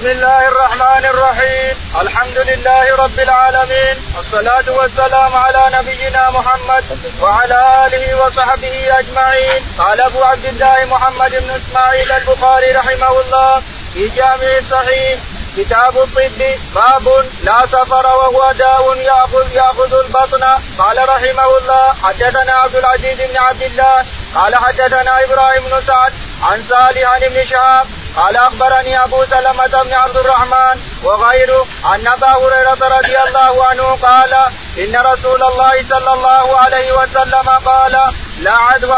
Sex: male